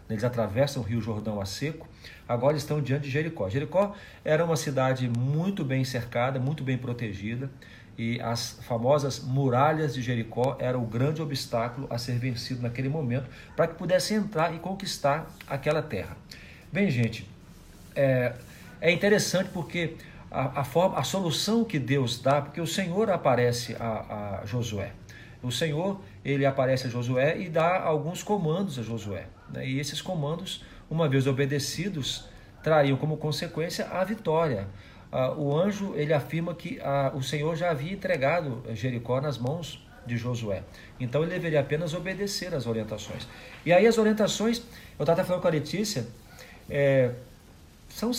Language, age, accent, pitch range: Portuguese, 50-69, Brazilian, 115-160 Hz